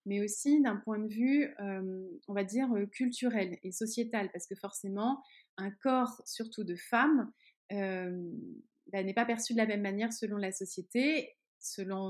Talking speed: 170 wpm